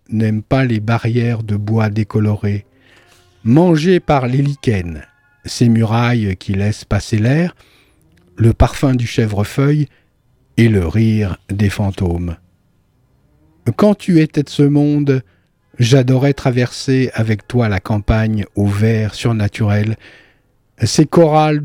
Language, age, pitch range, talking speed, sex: French, 50-69, 105-130 Hz, 120 wpm, male